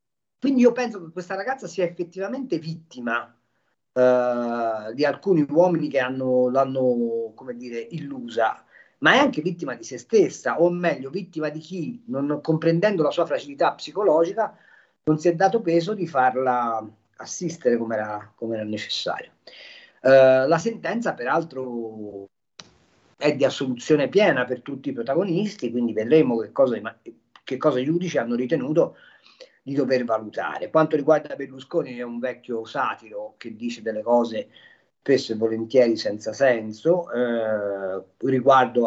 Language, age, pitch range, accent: Italian, 40-59, 115-160 Hz, native